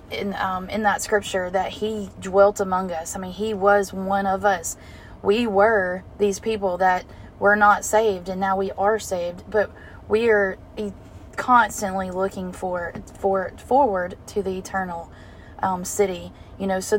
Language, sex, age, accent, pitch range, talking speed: English, female, 20-39, American, 180-205 Hz, 160 wpm